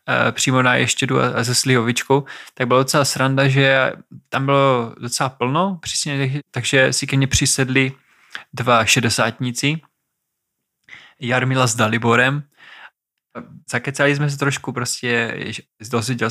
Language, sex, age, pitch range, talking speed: Czech, male, 20-39, 115-135 Hz, 120 wpm